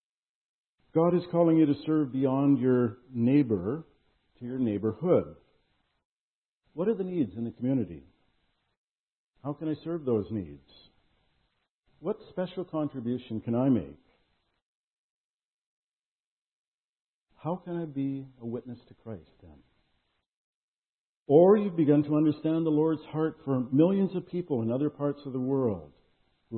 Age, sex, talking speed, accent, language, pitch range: 60-79, male, 135 wpm, American, English, 110-150 Hz